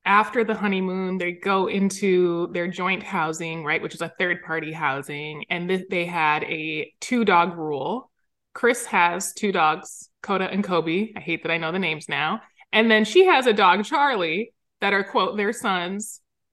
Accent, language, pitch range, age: American, English, 175-220 Hz, 20-39